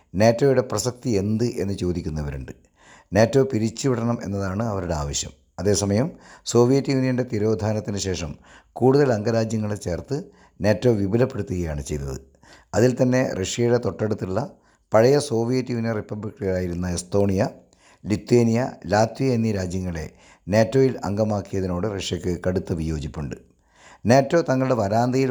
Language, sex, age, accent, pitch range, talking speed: Malayalam, male, 50-69, native, 90-120 Hz, 100 wpm